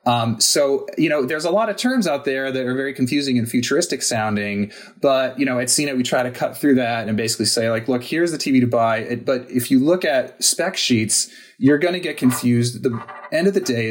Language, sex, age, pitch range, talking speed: English, male, 30-49, 105-140 Hz, 240 wpm